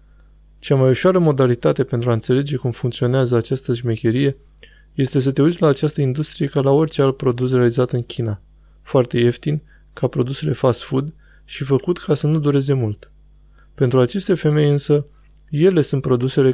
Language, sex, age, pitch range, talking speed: Romanian, male, 20-39, 120-145 Hz, 165 wpm